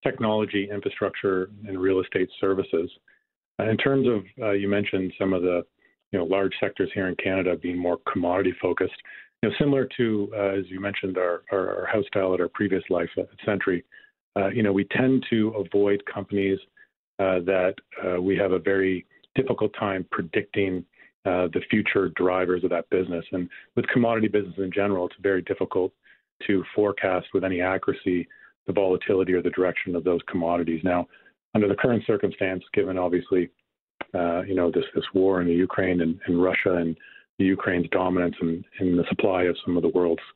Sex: male